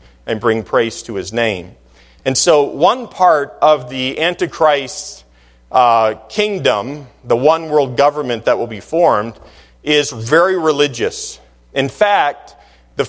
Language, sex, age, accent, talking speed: English, male, 40-59, American, 135 wpm